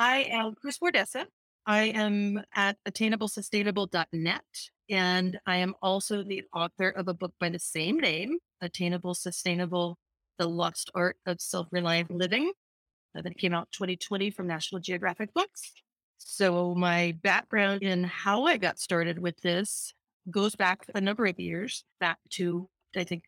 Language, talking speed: English, 150 wpm